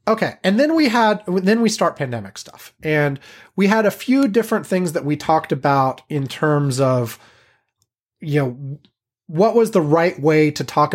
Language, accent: English, American